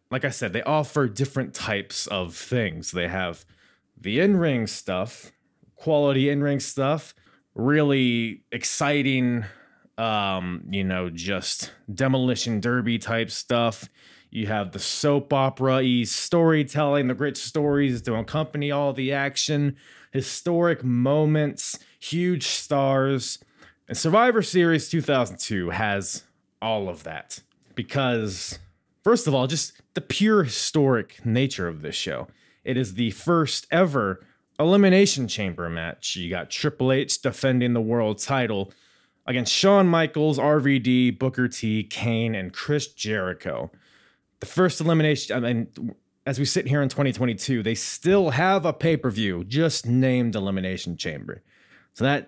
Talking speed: 130 wpm